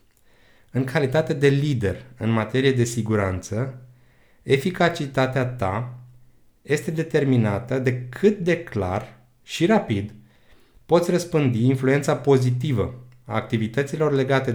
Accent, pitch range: native, 115-140 Hz